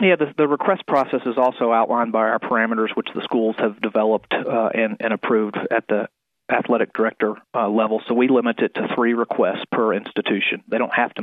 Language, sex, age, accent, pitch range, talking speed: English, male, 40-59, American, 110-115 Hz, 210 wpm